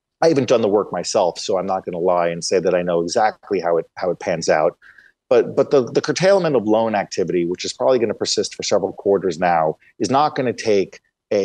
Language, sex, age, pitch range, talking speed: English, male, 30-49, 95-130 Hz, 250 wpm